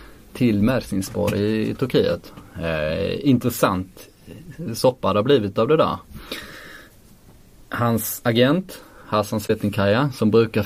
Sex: male